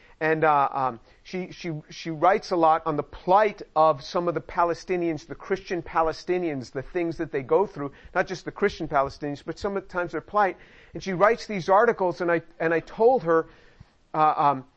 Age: 50-69